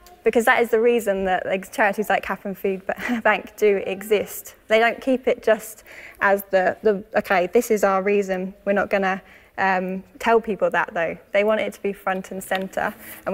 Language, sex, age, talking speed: English, female, 10-29, 205 wpm